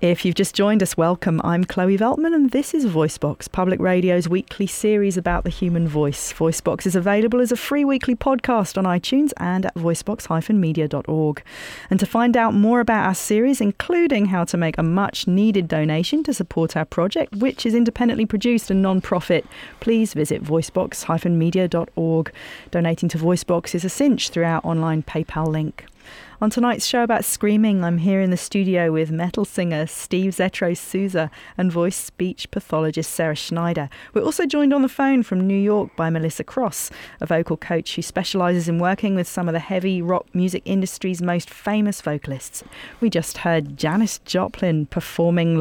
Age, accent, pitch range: 40-59, British, 165-210 Hz